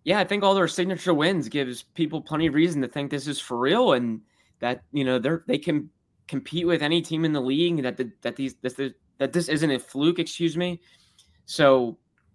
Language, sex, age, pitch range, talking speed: English, male, 10-29, 115-135 Hz, 215 wpm